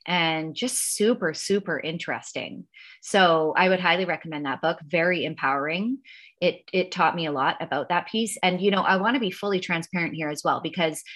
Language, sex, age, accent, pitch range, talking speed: English, female, 30-49, American, 165-205 Hz, 195 wpm